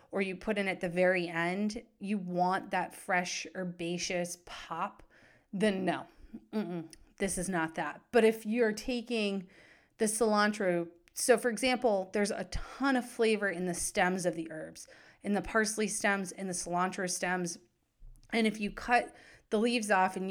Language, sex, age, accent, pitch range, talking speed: English, female, 30-49, American, 180-230 Hz, 170 wpm